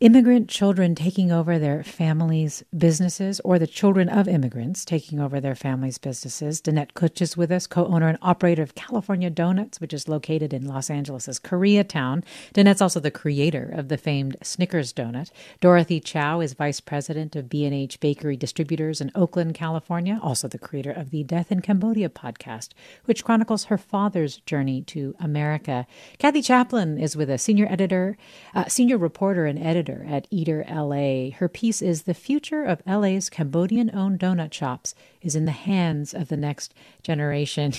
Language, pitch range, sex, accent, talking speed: English, 155-200 Hz, female, American, 170 wpm